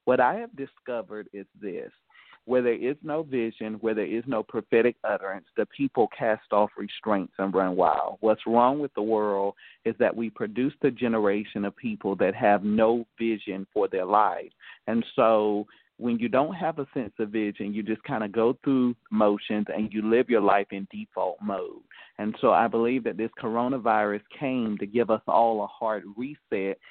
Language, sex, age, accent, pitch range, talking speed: English, male, 40-59, American, 105-125 Hz, 190 wpm